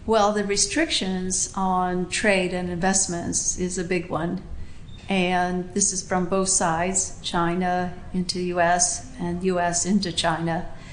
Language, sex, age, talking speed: English, female, 50-69, 135 wpm